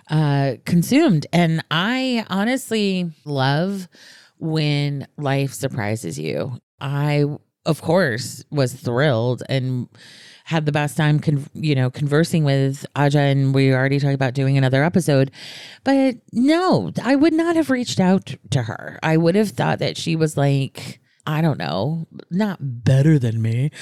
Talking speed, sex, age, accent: 150 wpm, female, 30-49, American